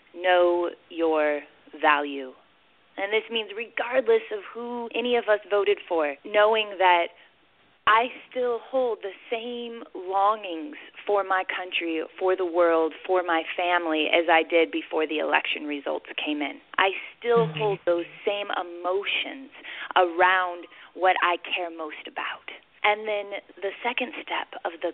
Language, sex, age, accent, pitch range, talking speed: English, female, 20-39, American, 170-235 Hz, 140 wpm